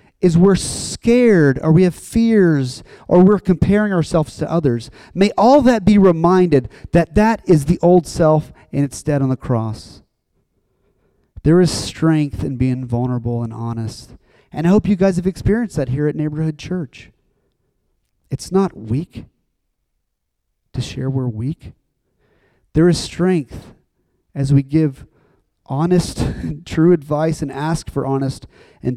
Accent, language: American, English